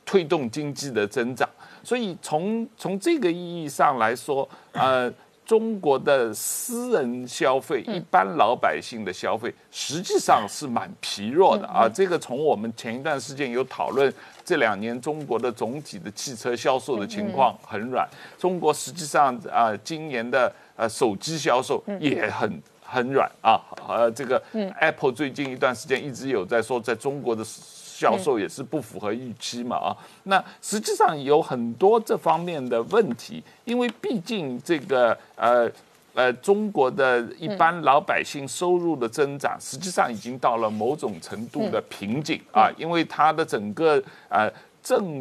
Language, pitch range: Chinese, 125-190 Hz